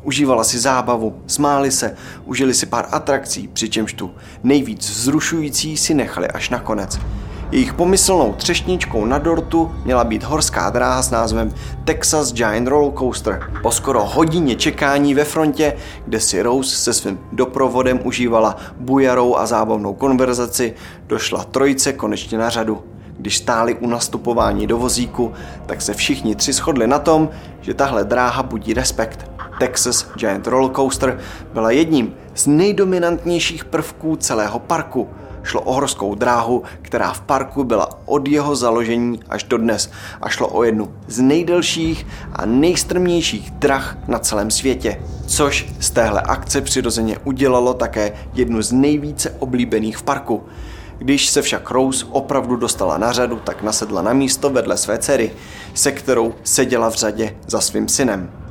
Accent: native